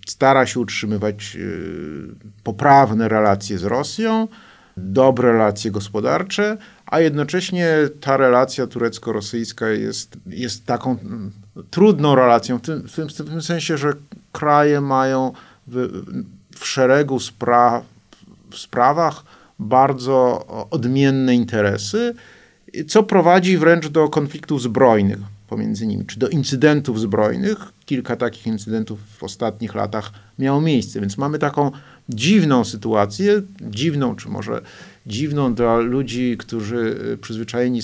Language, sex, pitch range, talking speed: Polish, male, 110-150 Hz, 110 wpm